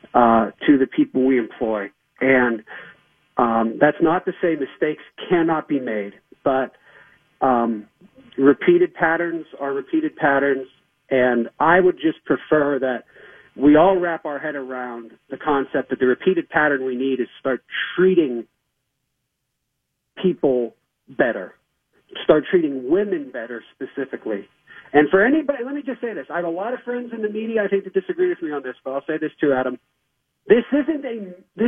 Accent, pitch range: American, 140-215 Hz